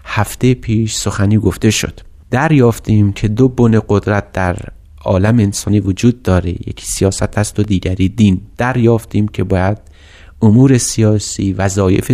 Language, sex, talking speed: Persian, male, 140 wpm